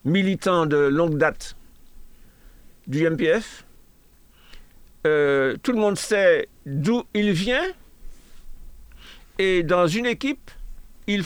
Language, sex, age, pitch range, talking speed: French, male, 60-79, 160-235 Hz, 100 wpm